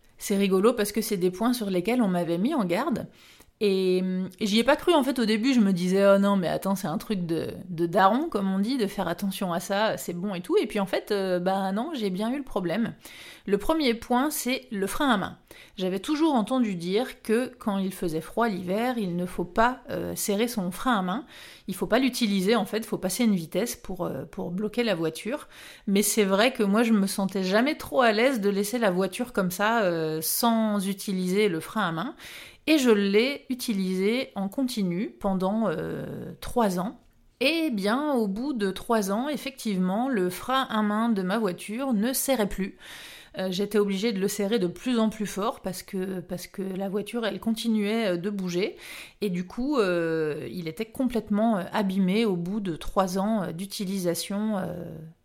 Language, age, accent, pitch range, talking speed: French, 30-49, French, 190-230 Hz, 210 wpm